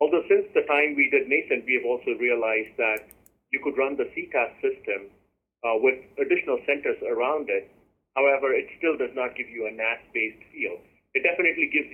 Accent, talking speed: Indian, 185 wpm